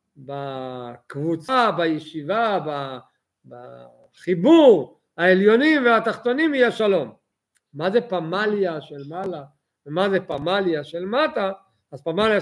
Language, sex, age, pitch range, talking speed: Hebrew, male, 50-69, 160-215 Hz, 90 wpm